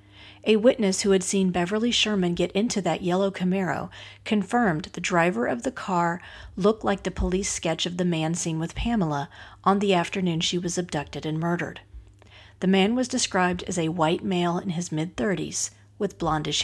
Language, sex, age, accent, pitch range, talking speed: English, female, 40-59, American, 160-205 Hz, 185 wpm